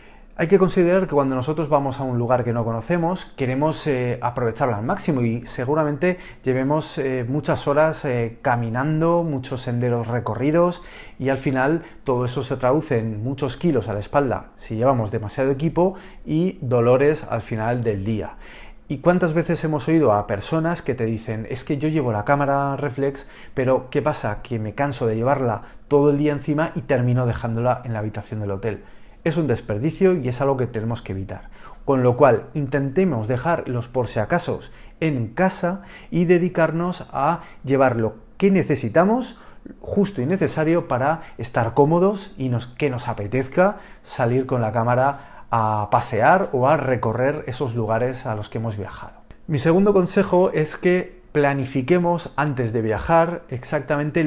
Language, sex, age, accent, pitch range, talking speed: Spanish, male, 30-49, Spanish, 120-160 Hz, 170 wpm